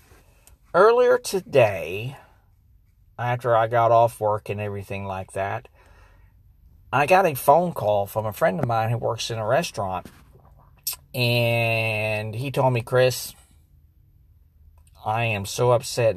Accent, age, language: American, 40-59, English